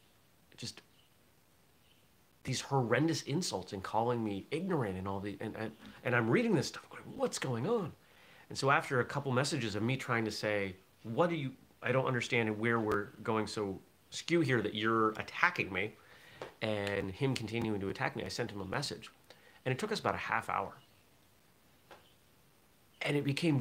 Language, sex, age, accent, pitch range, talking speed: English, male, 30-49, American, 100-130 Hz, 180 wpm